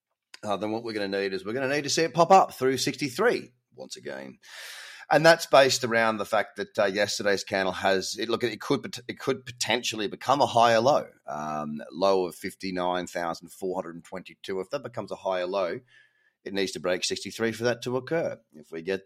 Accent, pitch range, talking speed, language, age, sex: Australian, 95-125 Hz, 210 wpm, English, 30-49, male